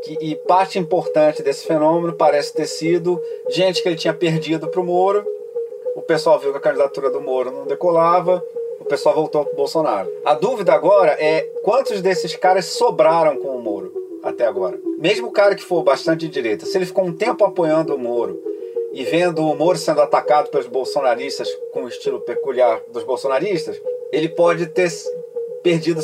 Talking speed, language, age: 175 wpm, Portuguese, 40-59